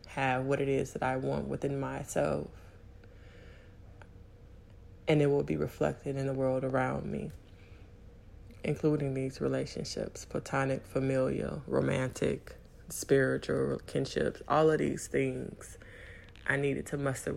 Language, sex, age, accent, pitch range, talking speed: English, female, 20-39, American, 95-145 Hz, 120 wpm